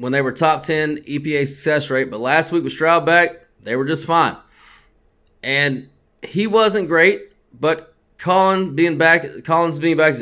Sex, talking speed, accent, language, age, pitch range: male, 165 wpm, American, English, 20-39, 140-190 Hz